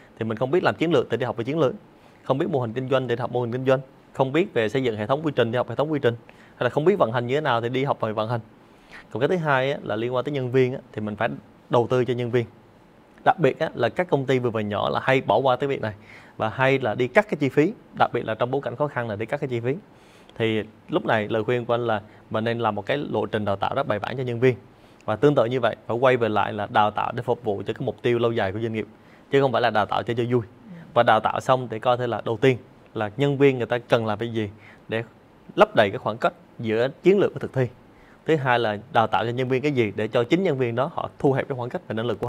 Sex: male